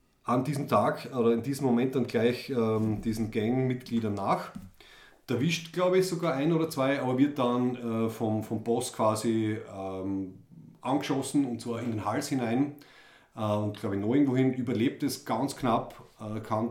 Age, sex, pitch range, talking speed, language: 30-49, male, 110-130 Hz, 175 wpm, German